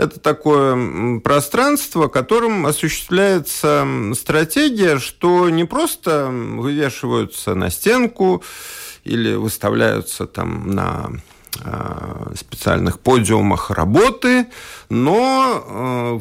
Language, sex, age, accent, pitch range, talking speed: Russian, male, 50-69, native, 115-185 Hz, 80 wpm